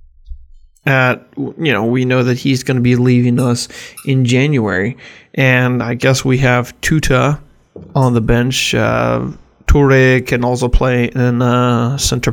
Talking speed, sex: 150 wpm, male